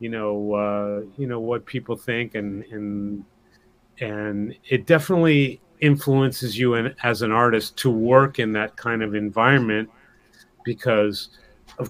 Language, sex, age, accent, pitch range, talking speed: English, male, 40-59, American, 110-130 Hz, 130 wpm